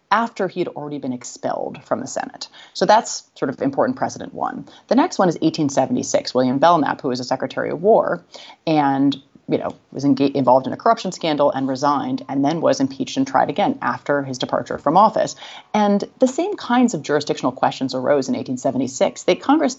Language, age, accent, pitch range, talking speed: English, 30-49, American, 140-225 Hz, 195 wpm